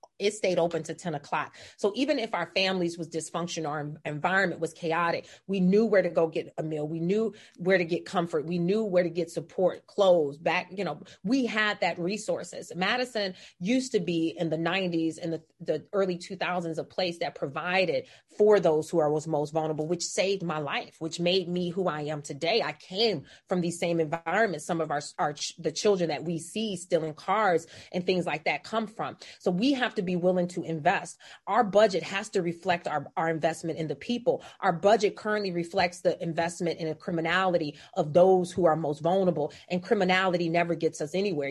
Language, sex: English, female